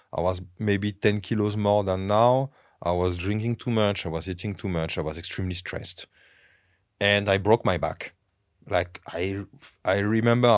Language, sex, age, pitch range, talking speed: Bulgarian, male, 30-49, 90-110 Hz, 175 wpm